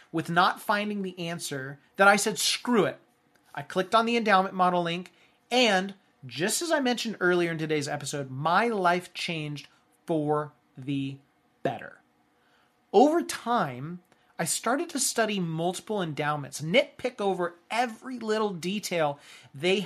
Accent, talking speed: American, 140 wpm